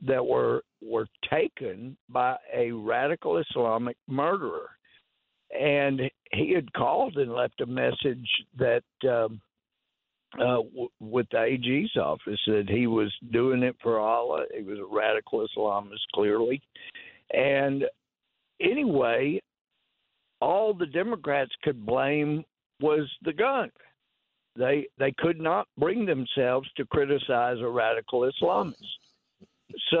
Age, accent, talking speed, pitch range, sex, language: 60-79, American, 120 wpm, 120-160 Hz, male, English